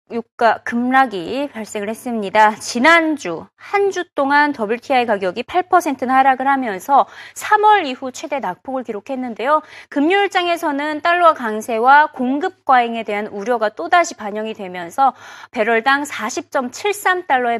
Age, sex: 30-49, female